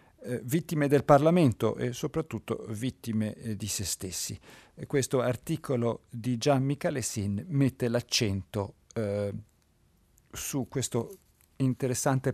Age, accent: 50-69, native